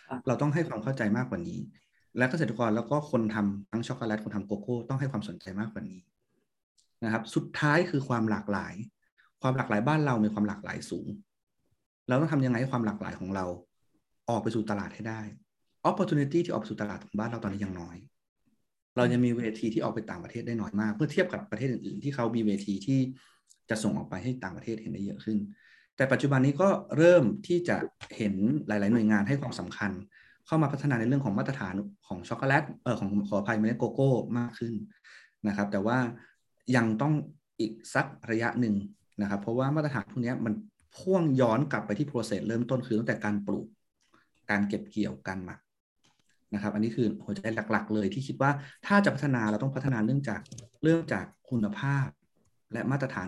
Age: 20-39